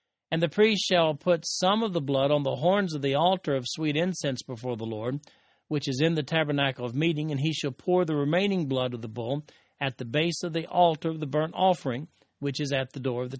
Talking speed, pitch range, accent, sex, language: 245 wpm, 130-160 Hz, American, male, English